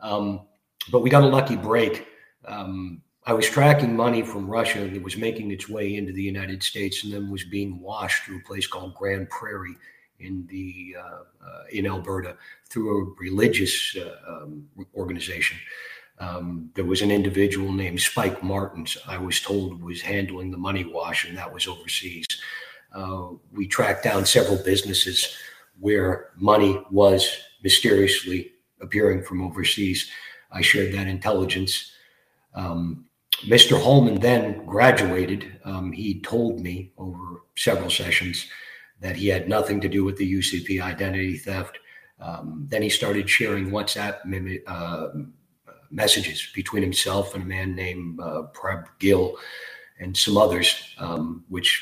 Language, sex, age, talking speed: English, male, 40-59, 150 wpm